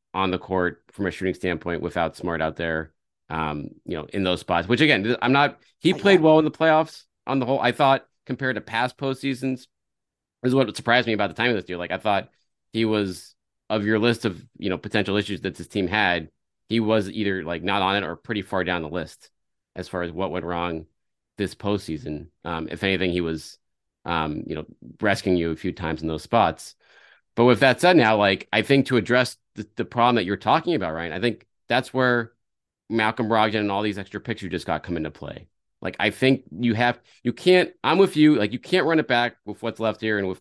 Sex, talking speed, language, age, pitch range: male, 235 wpm, English, 30-49, 90-120 Hz